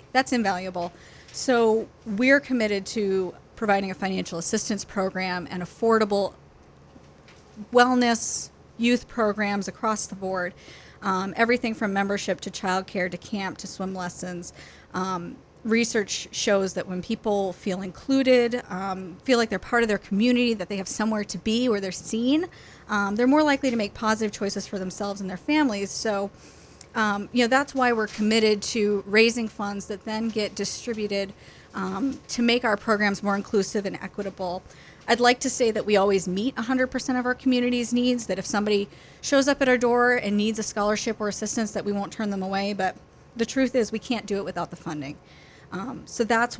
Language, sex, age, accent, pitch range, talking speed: English, female, 30-49, American, 195-235 Hz, 180 wpm